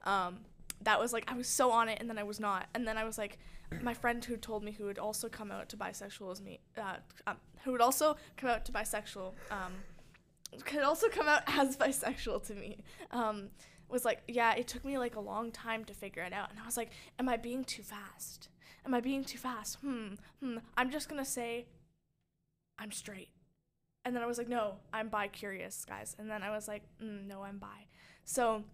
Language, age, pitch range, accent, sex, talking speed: English, 10-29, 205-245 Hz, American, female, 220 wpm